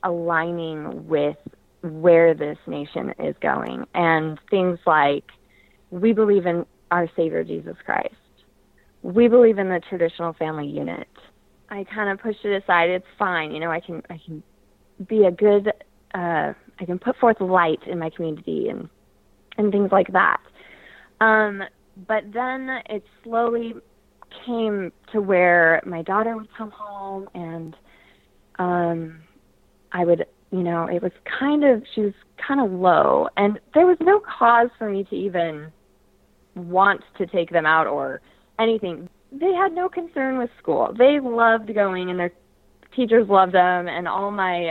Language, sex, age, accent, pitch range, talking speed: English, female, 20-39, American, 165-215 Hz, 155 wpm